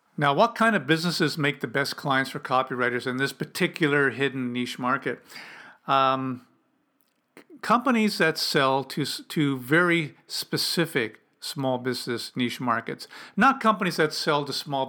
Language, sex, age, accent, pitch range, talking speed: English, male, 50-69, American, 135-165 Hz, 140 wpm